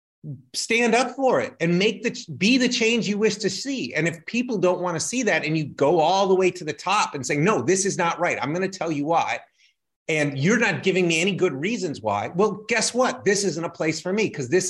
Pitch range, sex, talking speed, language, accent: 140-190 Hz, male, 260 wpm, English, American